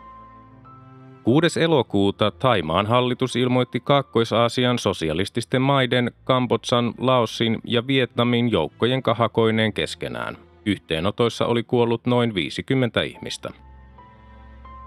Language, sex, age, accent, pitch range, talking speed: Finnish, male, 30-49, native, 100-125 Hz, 85 wpm